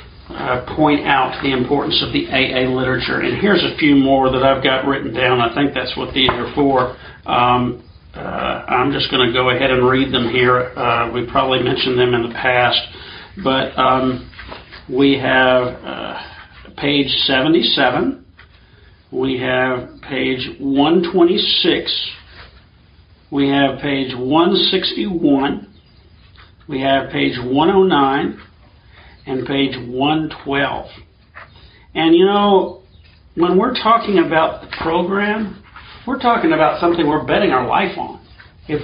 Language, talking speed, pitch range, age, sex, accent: English, 135 wpm, 125-165 Hz, 50-69, male, American